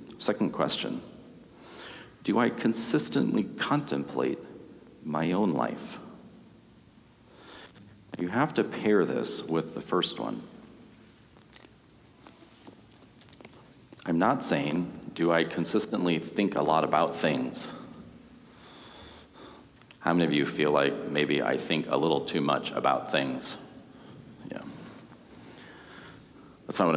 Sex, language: male, English